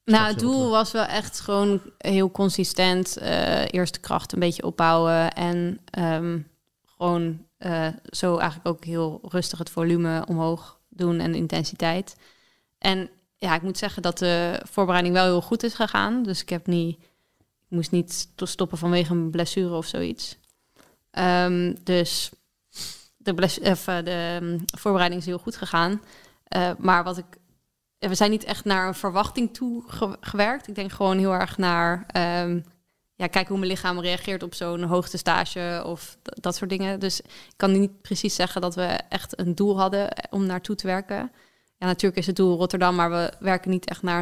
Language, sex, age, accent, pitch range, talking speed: Dutch, female, 20-39, Dutch, 175-195 Hz, 175 wpm